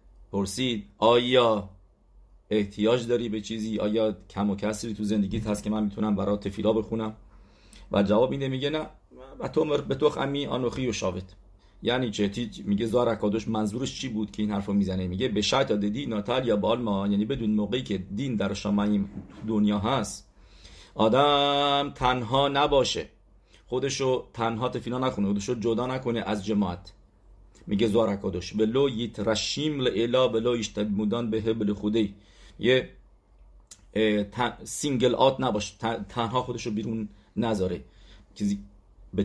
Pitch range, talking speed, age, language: 100-120 Hz, 150 wpm, 40-59, English